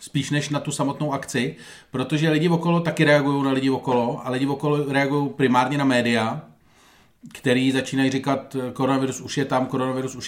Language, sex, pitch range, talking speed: Czech, male, 125-145 Hz, 175 wpm